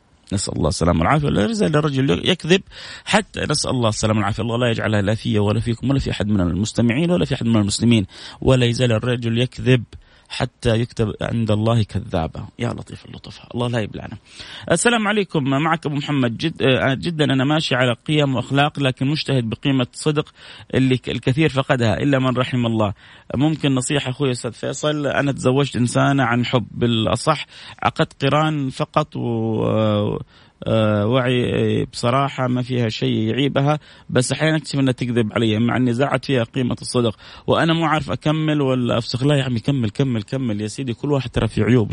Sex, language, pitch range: male, Arabic, 115-140 Hz